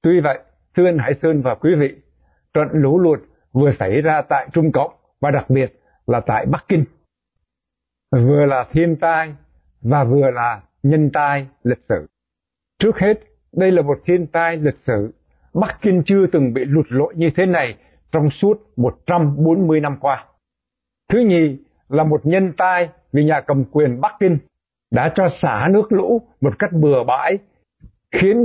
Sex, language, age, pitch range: male, Vietnamese, 60-79, 135-175 Hz